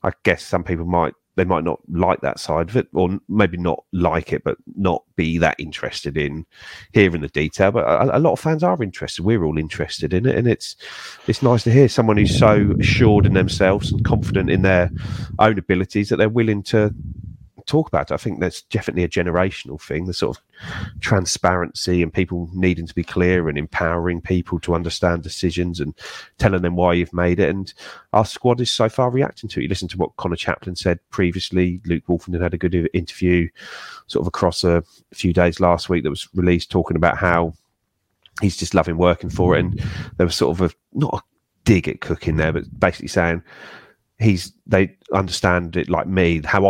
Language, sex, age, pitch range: English, male, 30-49, 85-95 Hz